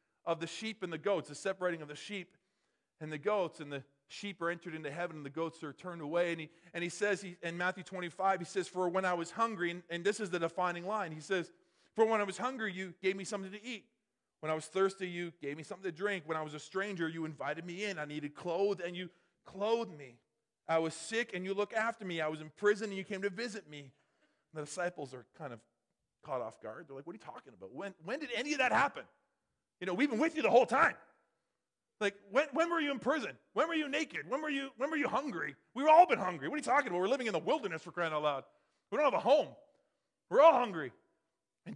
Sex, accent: male, American